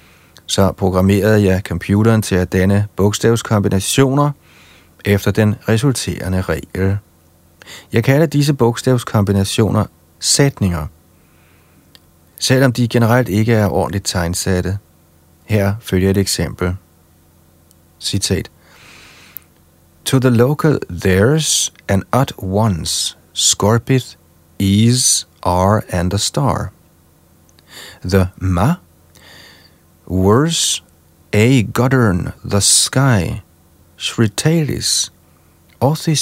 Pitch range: 85-115 Hz